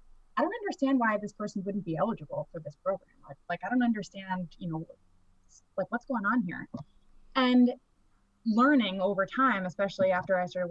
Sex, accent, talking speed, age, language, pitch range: female, American, 180 wpm, 20-39, English, 165-225 Hz